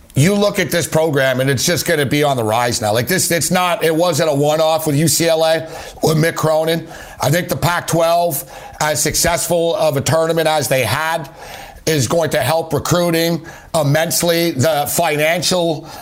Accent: American